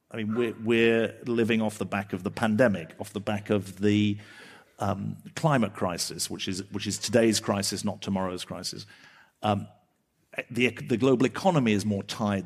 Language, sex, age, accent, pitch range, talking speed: English, male, 40-59, British, 105-135 Hz, 175 wpm